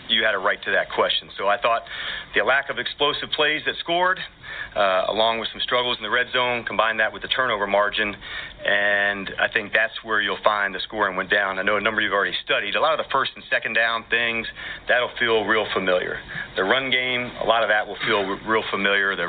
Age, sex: 40-59, male